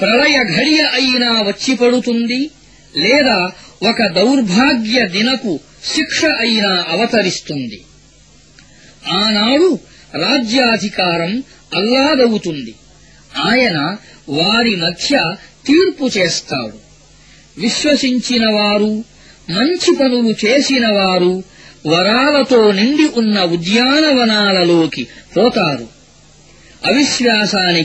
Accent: Indian